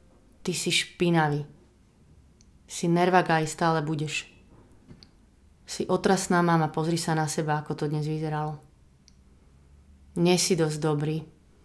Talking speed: 120 wpm